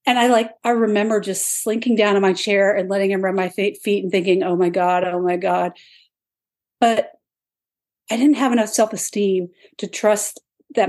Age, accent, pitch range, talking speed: 40-59, American, 175-215 Hz, 200 wpm